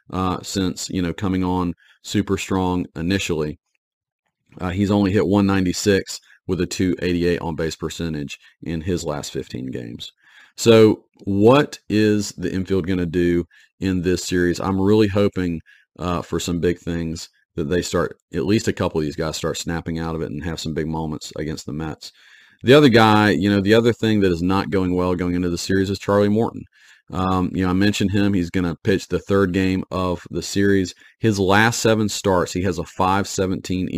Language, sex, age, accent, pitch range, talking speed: English, male, 40-59, American, 90-100 Hz, 195 wpm